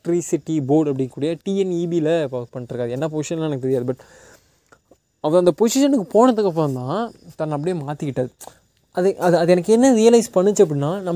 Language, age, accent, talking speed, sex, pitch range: Tamil, 20-39, native, 150 wpm, male, 150-200 Hz